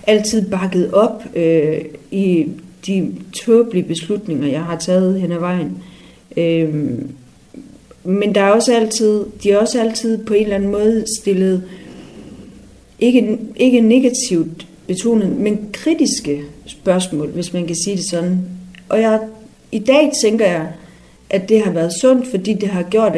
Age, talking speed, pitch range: 40-59, 150 wpm, 165-215 Hz